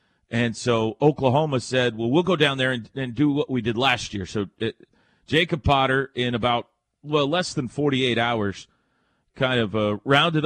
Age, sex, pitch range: 40-59, male, 100-135 Hz